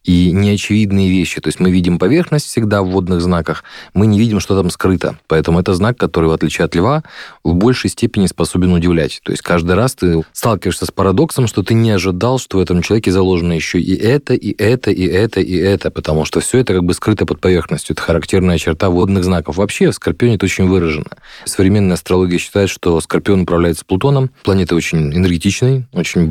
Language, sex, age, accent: Russian, male, 20-39, native